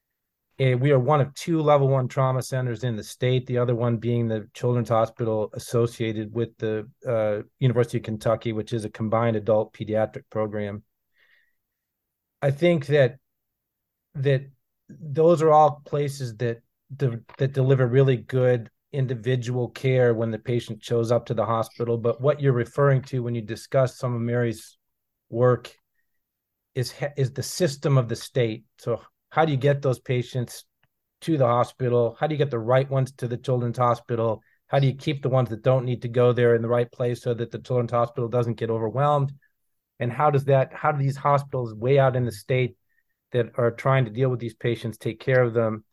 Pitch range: 115-135 Hz